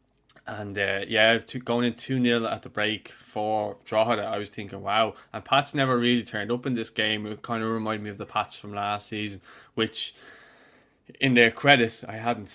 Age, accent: 20-39, Irish